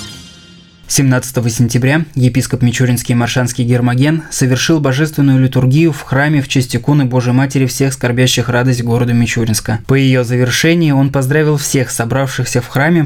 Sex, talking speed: male, 140 wpm